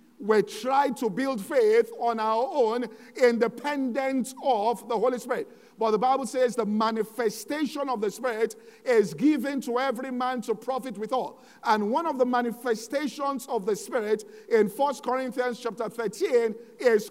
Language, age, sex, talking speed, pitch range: English, 50-69, male, 160 wpm, 225-270 Hz